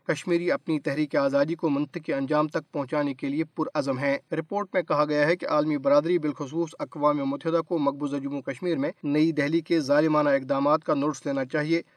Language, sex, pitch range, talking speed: Urdu, male, 145-175 Hz, 190 wpm